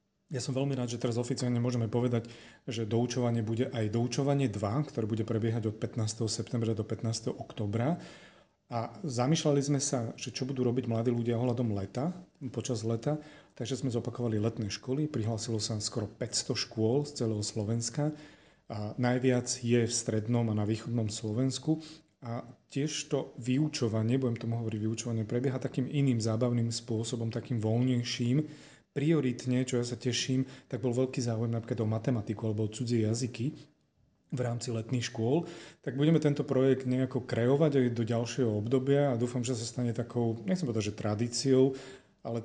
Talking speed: 165 wpm